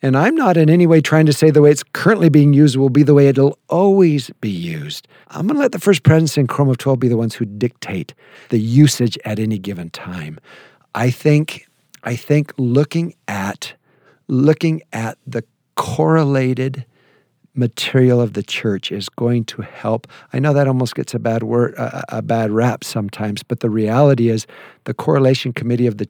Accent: American